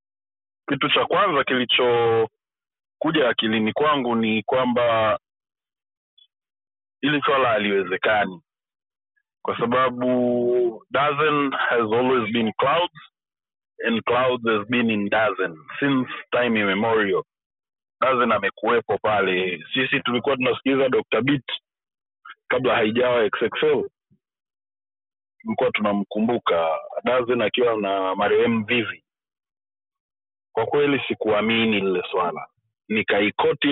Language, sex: Swahili, male